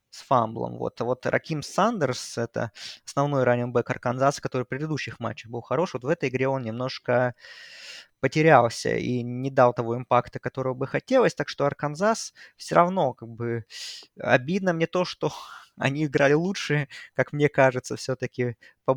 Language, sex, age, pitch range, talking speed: Russian, male, 20-39, 120-140 Hz, 160 wpm